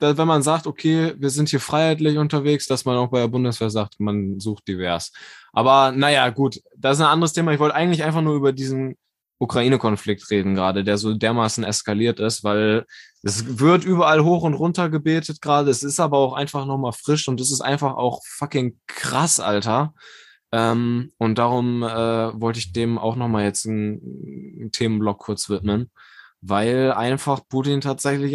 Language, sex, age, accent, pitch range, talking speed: German, male, 20-39, German, 115-145 Hz, 180 wpm